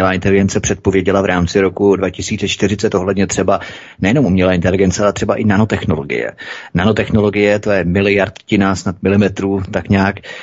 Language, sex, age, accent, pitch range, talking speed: Czech, male, 30-49, native, 90-105 Hz, 130 wpm